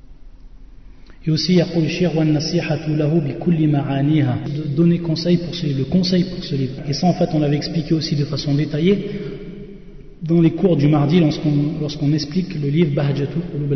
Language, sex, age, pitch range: French, male, 30-49, 140-165 Hz